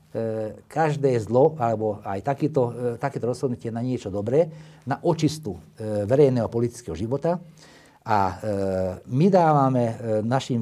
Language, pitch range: Slovak, 105-150 Hz